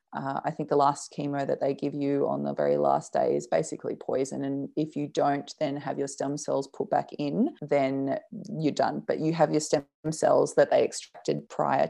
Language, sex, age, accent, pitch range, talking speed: English, female, 20-39, Australian, 135-155 Hz, 215 wpm